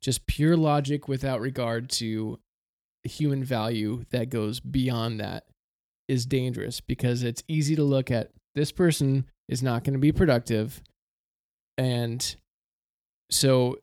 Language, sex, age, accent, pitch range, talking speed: English, male, 20-39, American, 110-140 Hz, 130 wpm